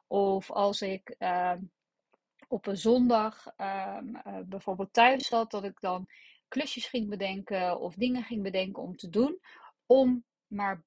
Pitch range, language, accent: 190-235 Hz, Dutch, Dutch